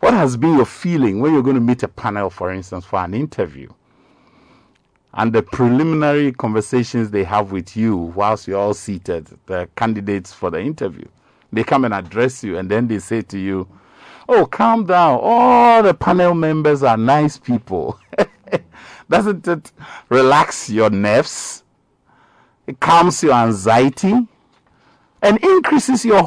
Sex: male